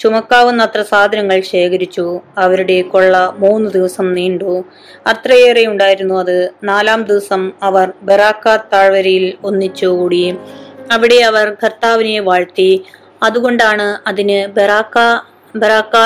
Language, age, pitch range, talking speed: Malayalam, 20-39, 190-225 Hz, 90 wpm